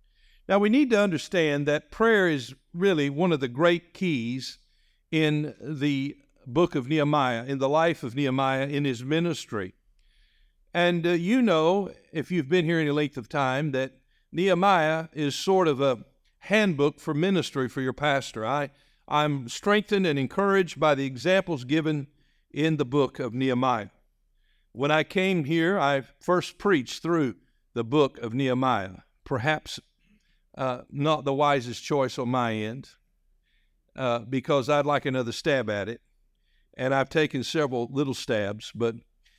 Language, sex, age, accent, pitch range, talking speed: English, male, 60-79, American, 120-155 Hz, 155 wpm